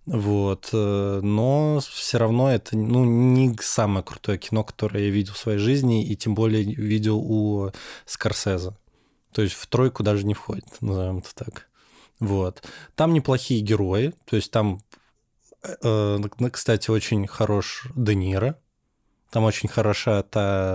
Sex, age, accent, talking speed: male, 20-39, native, 140 wpm